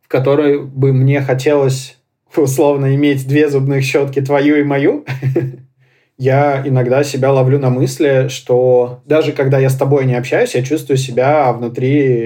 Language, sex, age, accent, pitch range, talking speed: Russian, male, 20-39, native, 125-140 Hz, 150 wpm